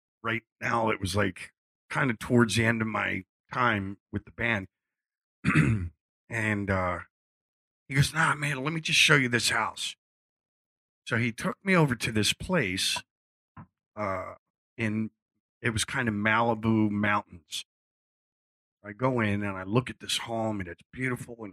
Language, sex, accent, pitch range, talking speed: English, male, American, 100-120 Hz, 160 wpm